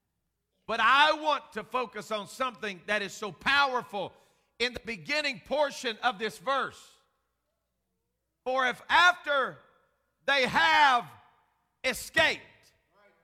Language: English